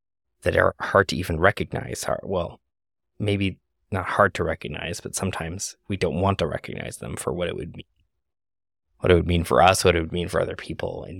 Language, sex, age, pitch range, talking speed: English, male, 20-39, 80-90 Hz, 210 wpm